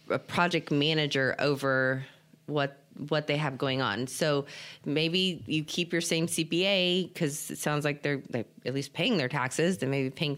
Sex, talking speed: female, 185 wpm